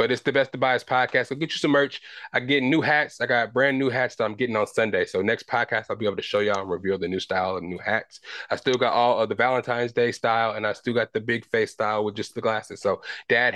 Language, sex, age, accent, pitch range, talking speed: English, male, 20-39, American, 105-135 Hz, 300 wpm